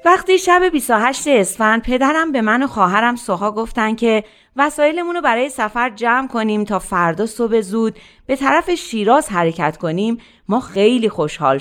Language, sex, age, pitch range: Persian, female, 30-49, 195-285 Hz